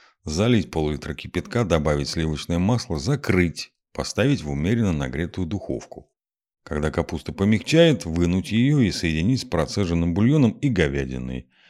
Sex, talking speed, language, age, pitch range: male, 125 wpm, Russian, 50-69, 80-120 Hz